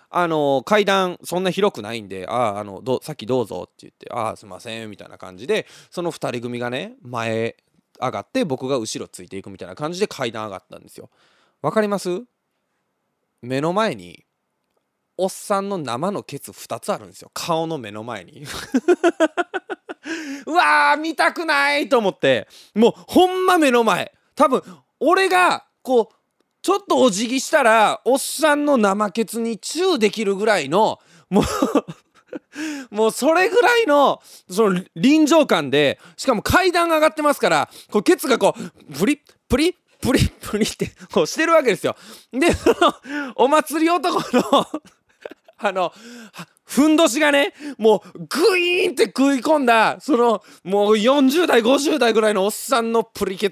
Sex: male